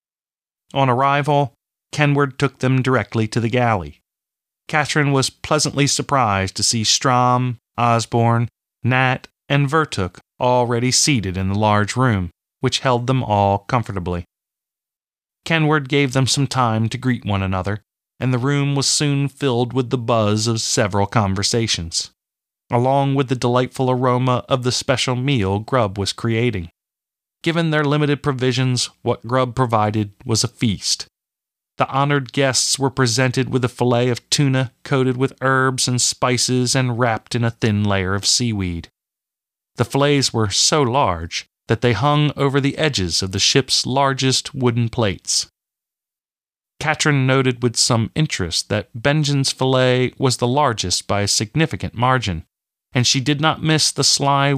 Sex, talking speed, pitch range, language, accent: male, 150 wpm, 110-135 Hz, English, American